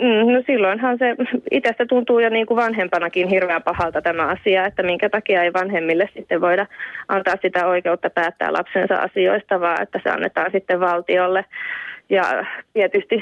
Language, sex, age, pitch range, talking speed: Finnish, female, 20-39, 180-205 Hz, 155 wpm